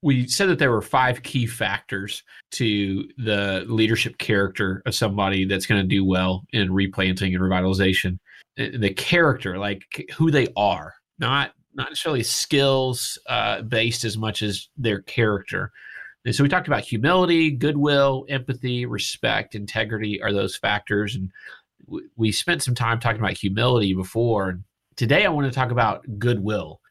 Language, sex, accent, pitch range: English, male, American, 105-140 Hz